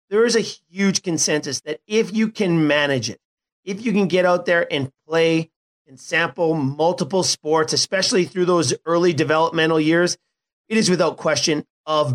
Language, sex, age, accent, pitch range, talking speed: English, male, 40-59, American, 155-185 Hz, 170 wpm